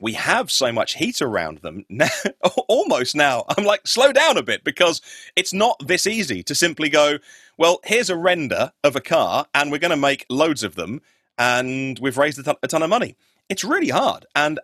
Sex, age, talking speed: male, 30-49, 215 wpm